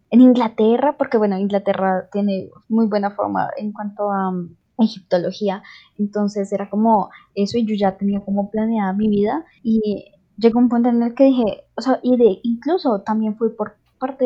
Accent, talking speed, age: Colombian, 180 wpm, 10-29